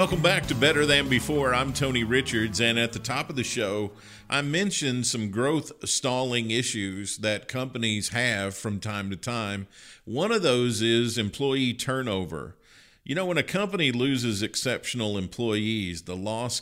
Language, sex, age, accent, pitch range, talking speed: English, male, 50-69, American, 100-135 Hz, 165 wpm